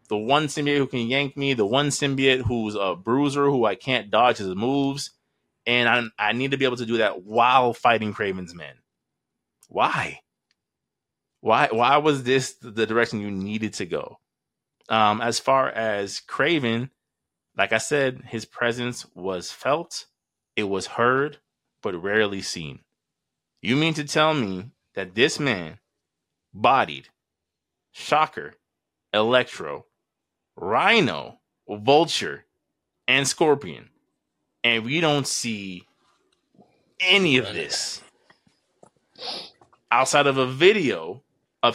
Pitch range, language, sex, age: 110-135 Hz, English, male, 20-39